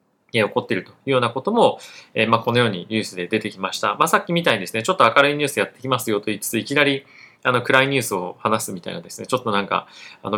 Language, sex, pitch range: Japanese, male, 115-185 Hz